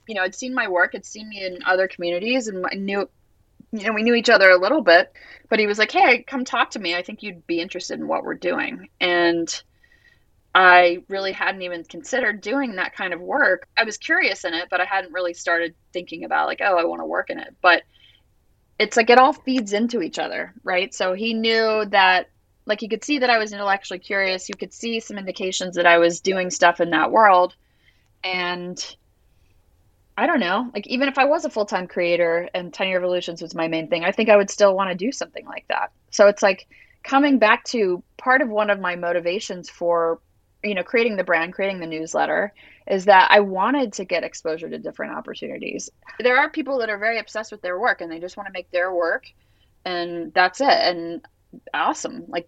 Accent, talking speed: American, 225 wpm